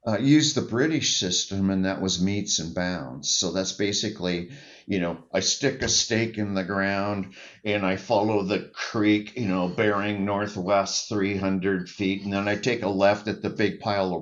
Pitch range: 95-115 Hz